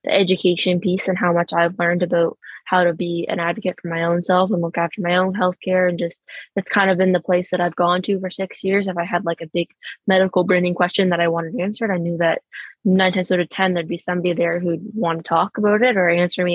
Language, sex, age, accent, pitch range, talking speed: English, female, 20-39, American, 170-190 Hz, 265 wpm